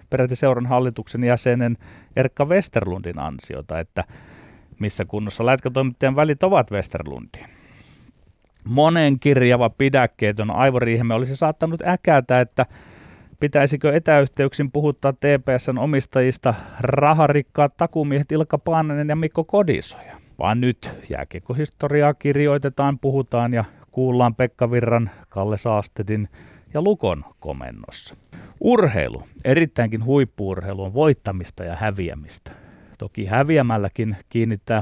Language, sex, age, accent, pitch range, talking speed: Finnish, male, 30-49, native, 105-145 Hz, 100 wpm